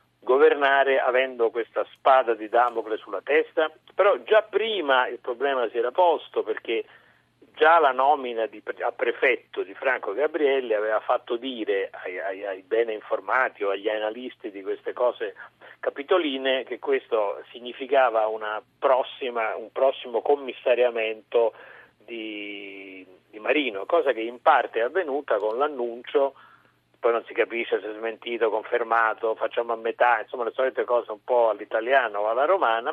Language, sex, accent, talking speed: Italian, male, native, 150 wpm